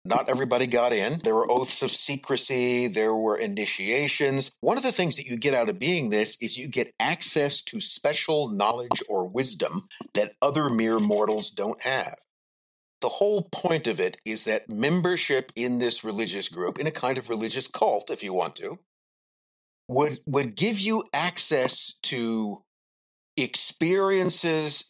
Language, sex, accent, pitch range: English, male, American, 115-155 Hz